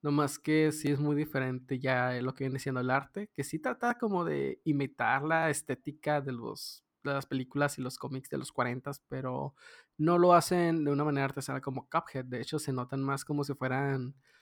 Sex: male